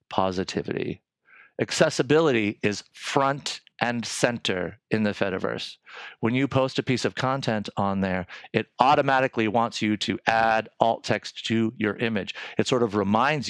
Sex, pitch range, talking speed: male, 105-150 Hz, 145 wpm